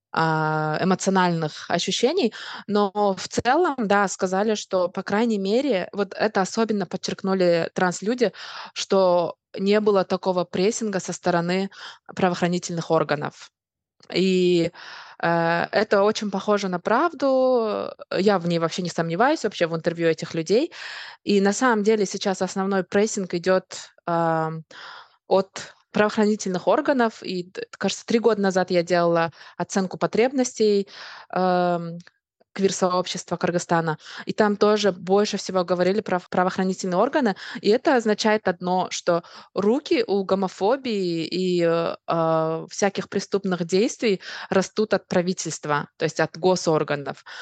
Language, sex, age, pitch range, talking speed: Russian, female, 20-39, 175-205 Hz, 120 wpm